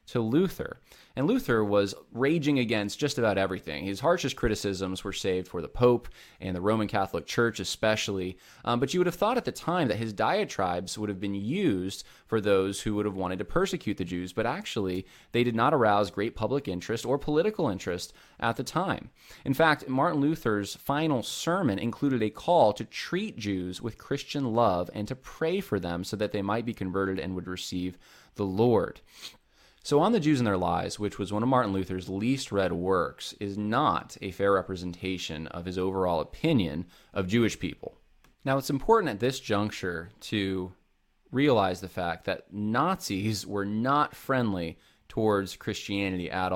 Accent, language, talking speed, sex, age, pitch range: American, English, 185 wpm, male, 20-39, 95-120 Hz